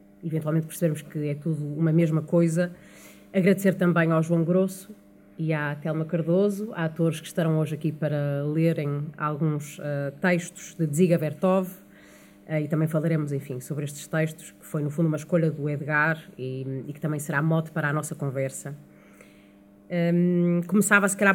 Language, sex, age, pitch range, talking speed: Portuguese, female, 30-49, 150-175 Hz, 170 wpm